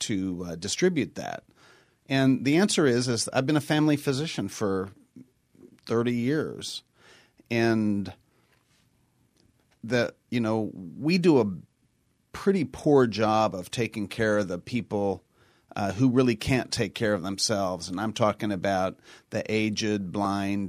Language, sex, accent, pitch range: English, male, American, 105-130 Hz